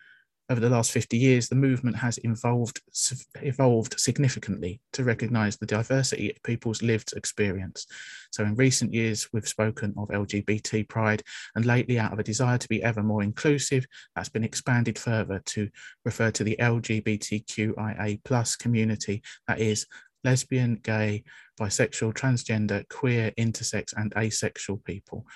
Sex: male